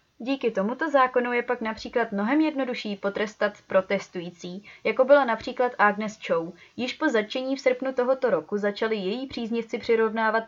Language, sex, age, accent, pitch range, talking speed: Czech, female, 20-39, native, 200-245 Hz, 150 wpm